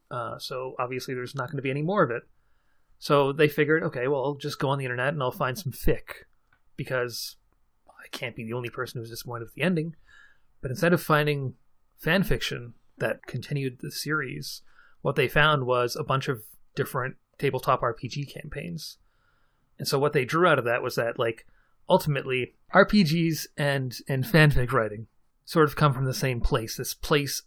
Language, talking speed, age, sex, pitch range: English, 190 wpm, 30-49, male, 125-150 Hz